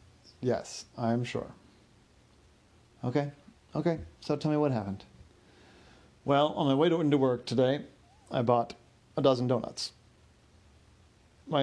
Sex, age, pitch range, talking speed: male, 30-49, 115-135 Hz, 125 wpm